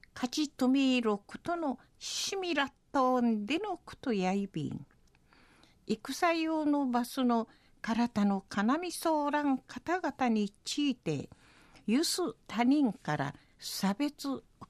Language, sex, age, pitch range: Japanese, female, 50-69, 210-290 Hz